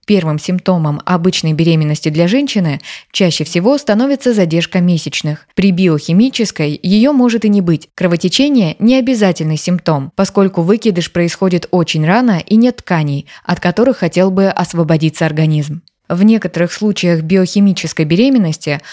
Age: 20-39